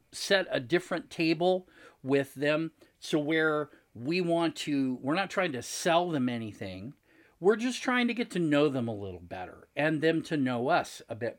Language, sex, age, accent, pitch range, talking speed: English, male, 50-69, American, 130-195 Hz, 190 wpm